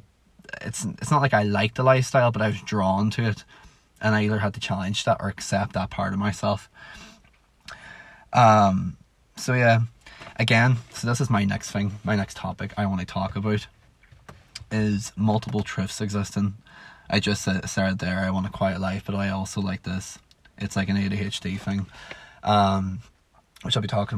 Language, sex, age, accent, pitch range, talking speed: English, male, 20-39, Irish, 100-110 Hz, 180 wpm